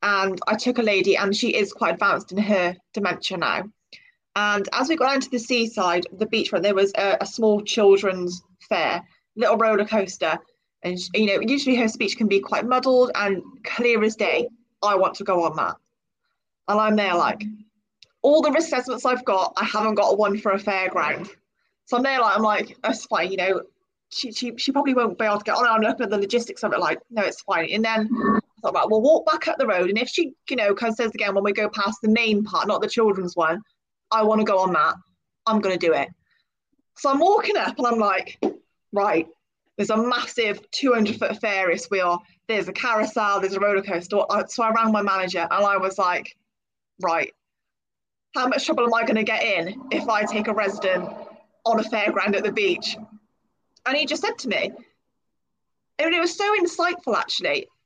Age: 20-39